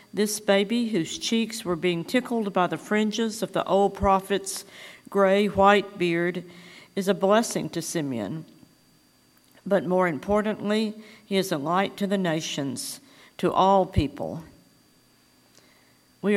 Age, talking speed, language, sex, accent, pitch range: 50-69, 130 wpm, English, female, American, 165-200 Hz